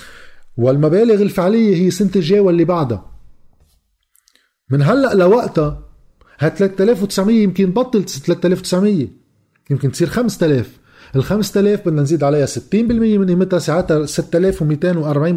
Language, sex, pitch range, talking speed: Arabic, male, 145-190 Hz, 105 wpm